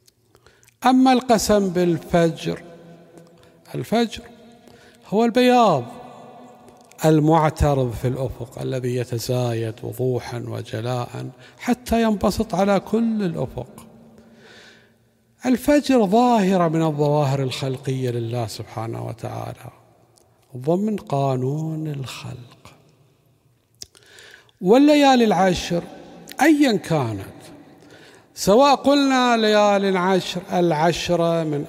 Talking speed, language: 75 wpm, Arabic